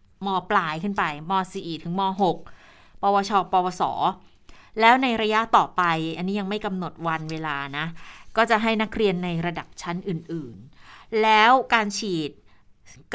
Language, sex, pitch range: Thai, female, 180-225 Hz